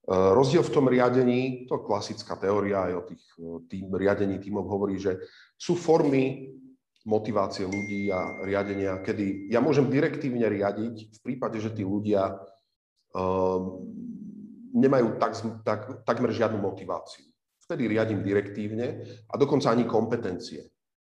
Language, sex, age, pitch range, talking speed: Slovak, male, 40-59, 100-135 Hz, 130 wpm